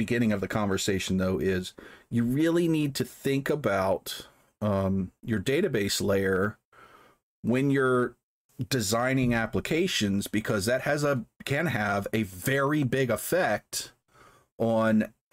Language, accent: English, American